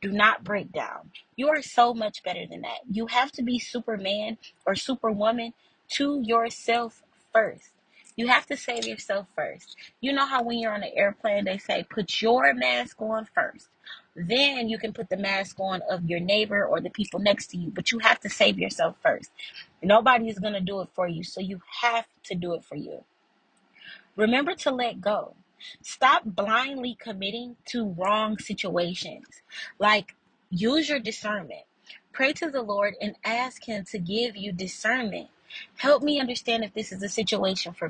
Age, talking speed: 20-39, 180 wpm